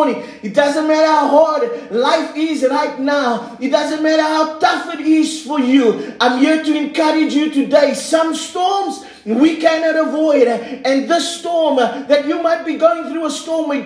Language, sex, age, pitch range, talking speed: English, male, 40-59, 245-320 Hz, 180 wpm